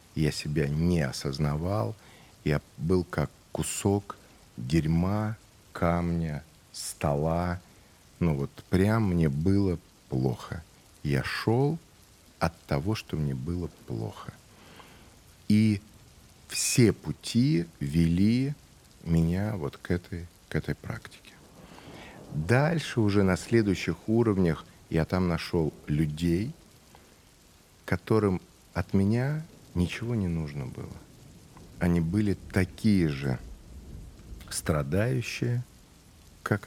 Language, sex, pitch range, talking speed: Russian, male, 80-105 Hz, 95 wpm